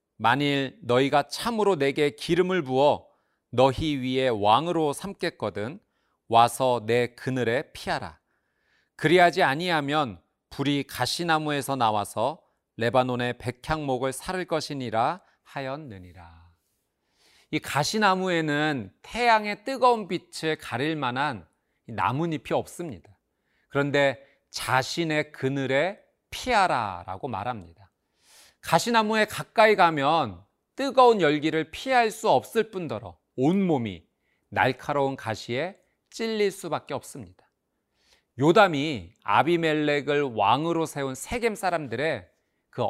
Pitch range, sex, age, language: 125-175 Hz, male, 40-59, Korean